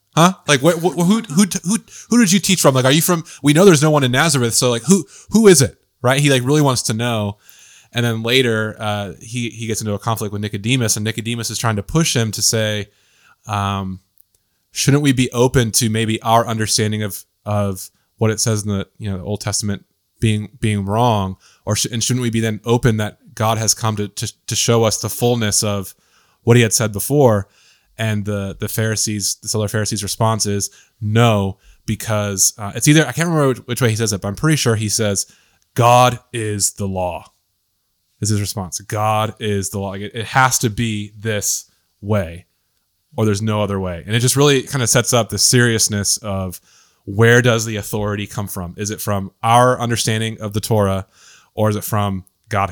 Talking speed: 215 wpm